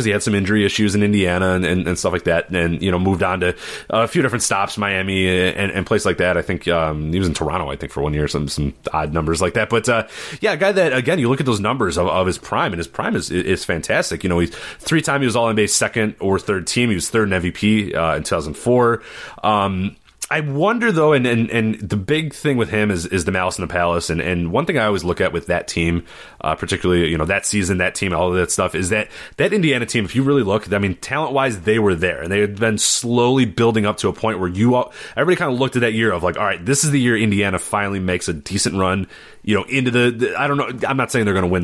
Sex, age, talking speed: male, 30-49, 285 wpm